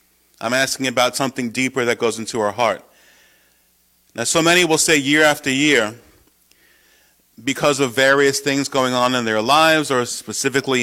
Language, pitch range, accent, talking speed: English, 115-145 Hz, American, 160 wpm